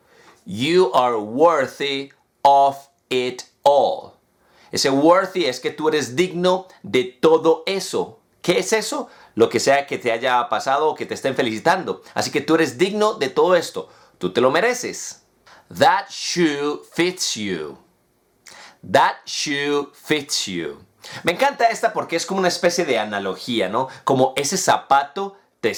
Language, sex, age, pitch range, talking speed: English, male, 40-59, 135-180 Hz, 155 wpm